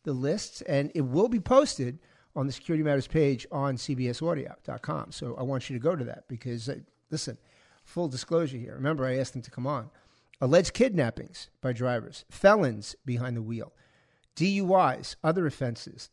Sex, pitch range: male, 125-170 Hz